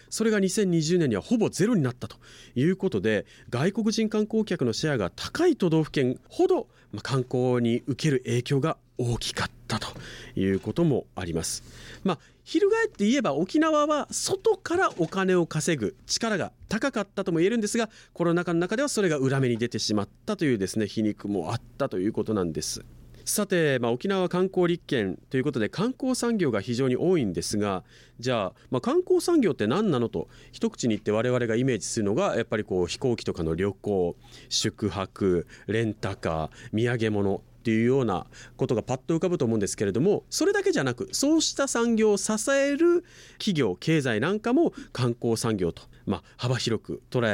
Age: 40-59